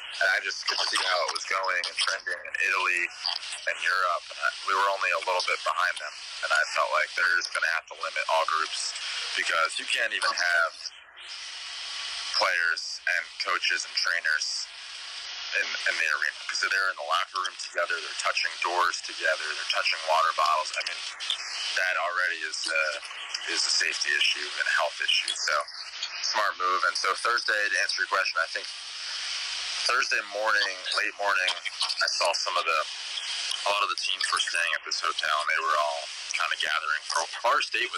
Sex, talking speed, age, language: male, 190 wpm, 20-39, English